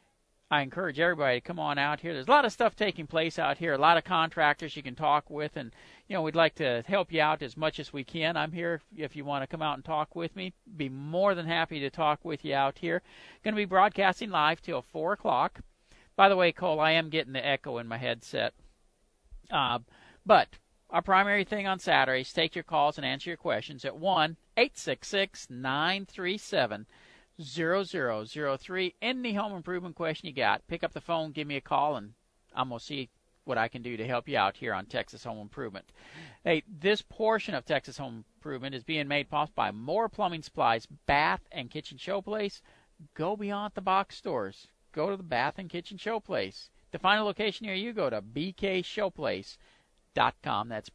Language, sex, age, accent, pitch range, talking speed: English, male, 50-69, American, 145-190 Hz, 200 wpm